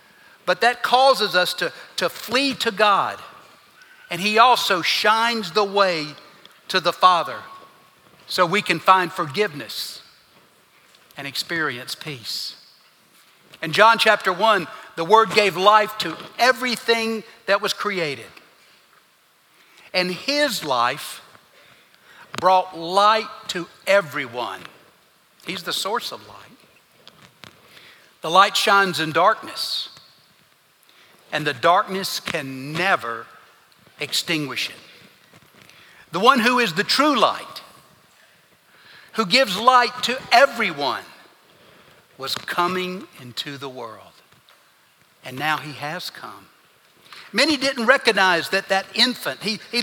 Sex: male